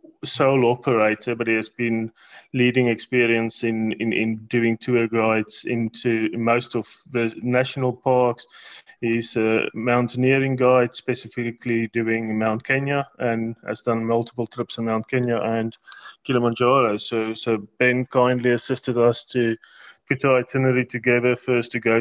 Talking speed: 140 wpm